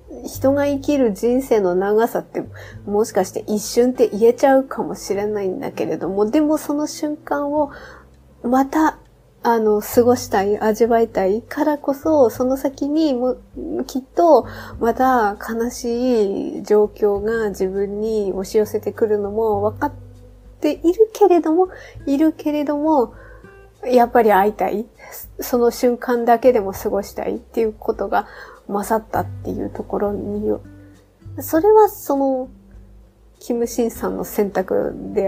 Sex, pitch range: female, 200-255 Hz